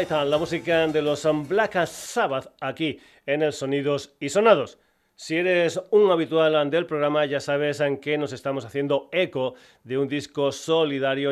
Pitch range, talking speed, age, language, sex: 135-155 Hz, 160 wpm, 40-59, Spanish, male